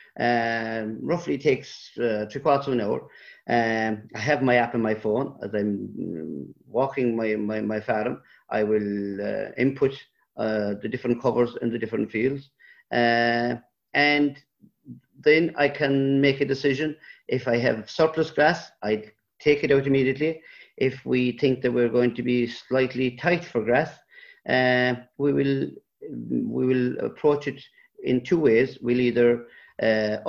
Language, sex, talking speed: English, male, 160 wpm